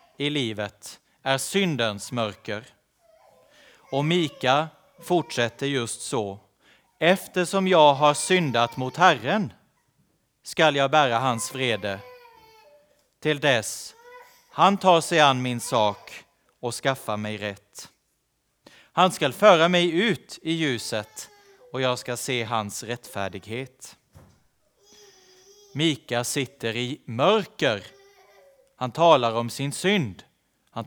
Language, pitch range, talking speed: Swedish, 115-185 Hz, 110 wpm